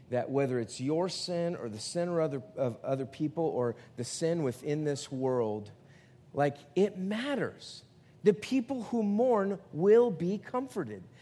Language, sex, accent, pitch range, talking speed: English, male, American, 170-225 Hz, 150 wpm